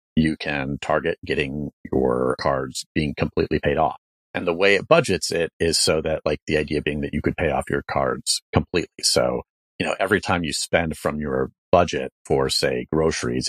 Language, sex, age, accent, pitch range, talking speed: English, male, 40-59, American, 70-90 Hz, 195 wpm